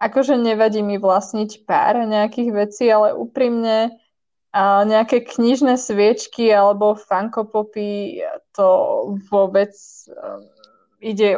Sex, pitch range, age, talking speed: female, 205-245 Hz, 20-39, 90 wpm